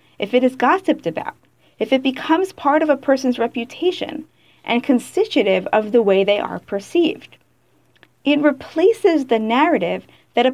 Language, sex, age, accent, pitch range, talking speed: English, female, 40-59, American, 225-305 Hz, 155 wpm